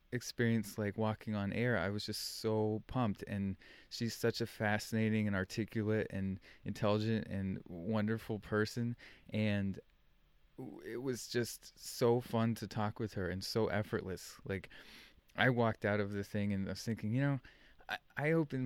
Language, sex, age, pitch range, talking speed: English, male, 20-39, 100-120 Hz, 165 wpm